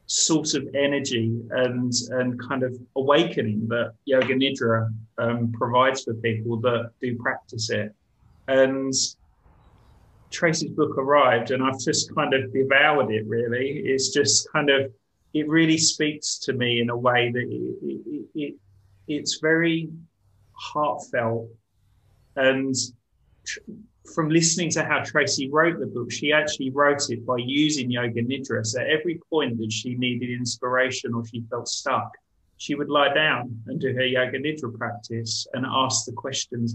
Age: 30-49